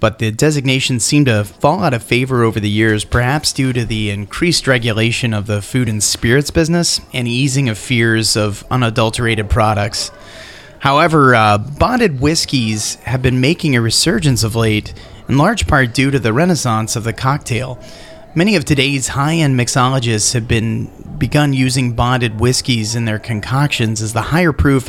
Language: English